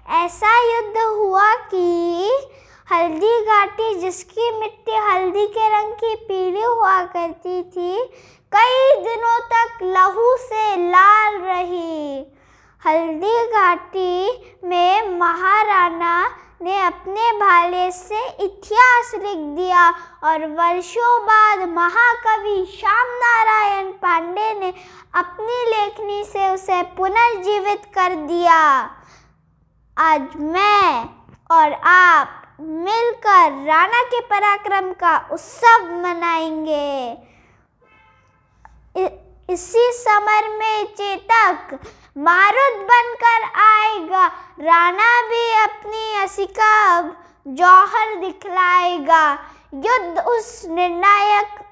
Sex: female